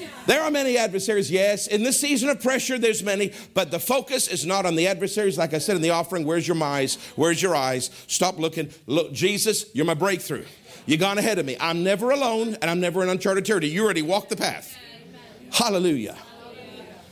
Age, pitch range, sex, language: 50-69, 170-255 Hz, male, English